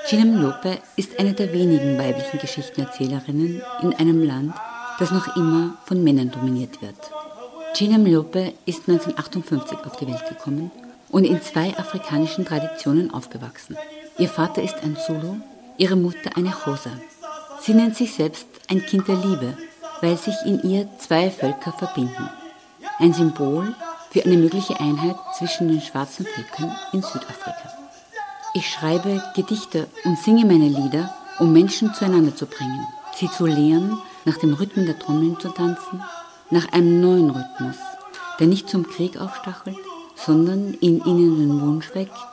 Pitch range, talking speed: 155-215 Hz, 150 wpm